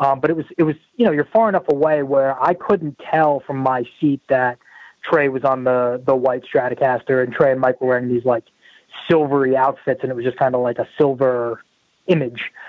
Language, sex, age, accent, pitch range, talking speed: English, male, 20-39, American, 125-145 Hz, 220 wpm